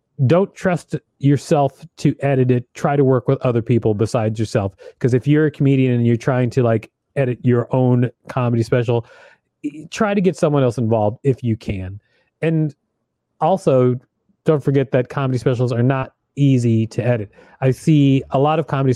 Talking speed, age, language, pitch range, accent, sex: 175 wpm, 30-49, English, 115-140 Hz, American, male